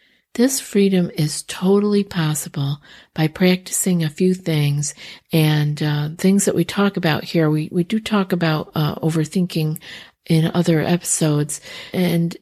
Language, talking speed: English, 140 wpm